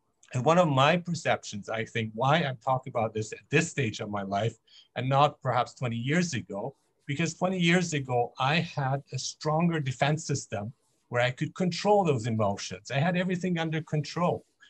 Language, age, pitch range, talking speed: English, 50-69, 120-160 Hz, 185 wpm